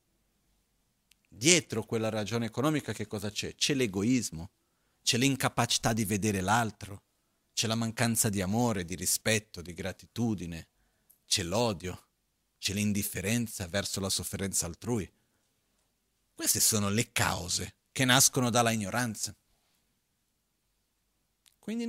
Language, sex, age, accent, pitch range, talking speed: Italian, male, 40-59, native, 105-140 Hz, 110 wpm